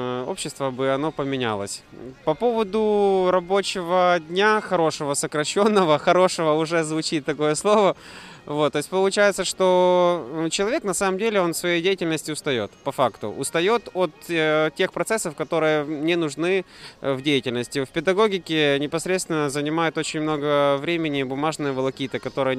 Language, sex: Russian, male